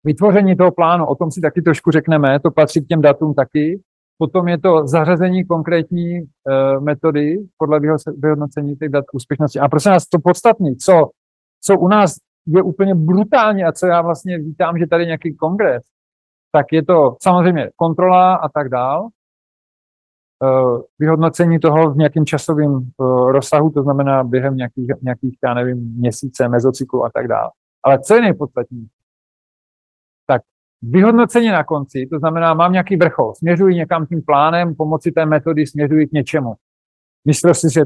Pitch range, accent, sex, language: 140-180 Hz, native, male, Czech